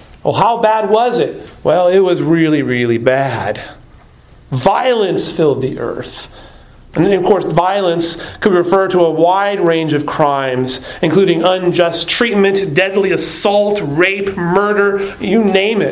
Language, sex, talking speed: English, male, 145 wpm